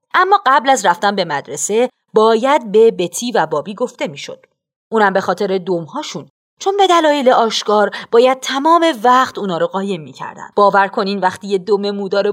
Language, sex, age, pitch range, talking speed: Persian, female, 40-59, 195-290 Hz, 155 wpm